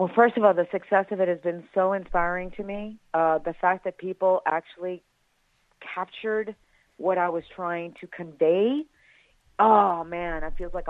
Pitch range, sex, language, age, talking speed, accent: 165-200 Hz, female, English, 40-59, 170 wpm, American